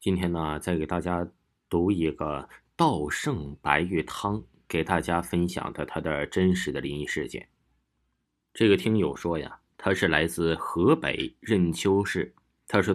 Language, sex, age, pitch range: Chinese, male, 20-39, 80-100 Hz